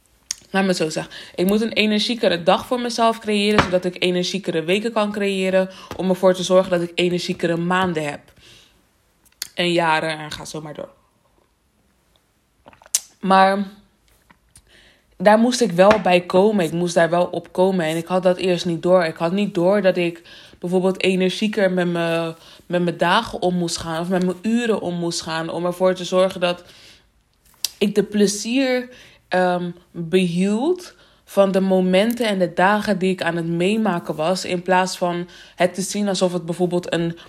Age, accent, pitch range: 20-39, Dutch, 175-210 Hz